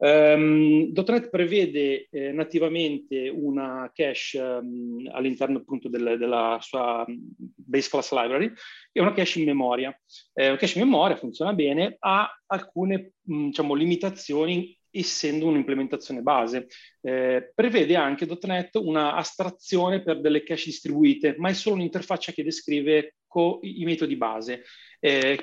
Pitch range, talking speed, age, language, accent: 130-170 Hz, 130 wpm, 30-49, Italian, native